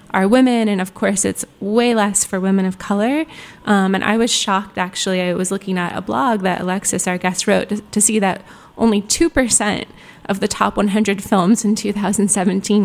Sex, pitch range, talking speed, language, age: female, 185-215 Hz, 215 wpm, English, 20-39